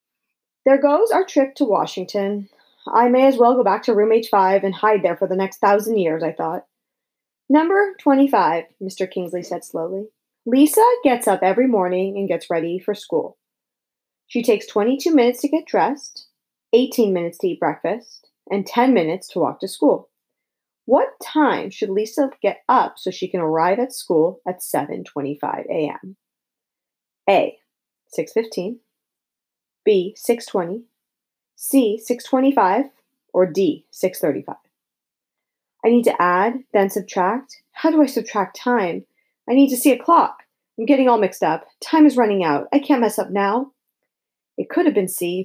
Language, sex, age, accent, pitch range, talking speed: English, female, 30-49, American, 185-255 Hz, 160 wpm